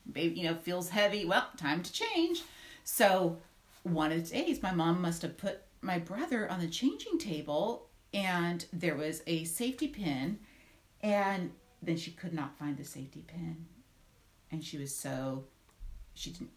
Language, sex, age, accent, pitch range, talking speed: English, female, 40-59, American, 150-200 Hz, 165 wpm